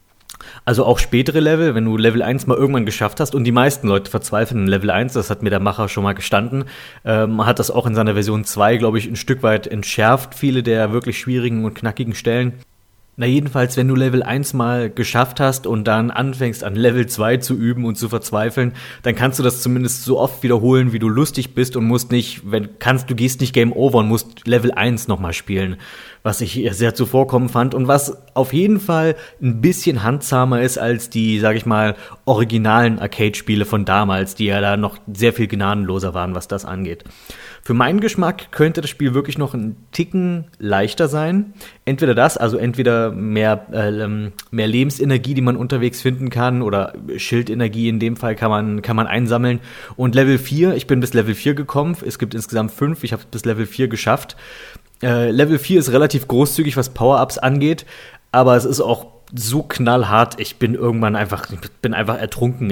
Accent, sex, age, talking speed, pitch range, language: German, male, 30-49, 200 wpm, 110-130 Hz, German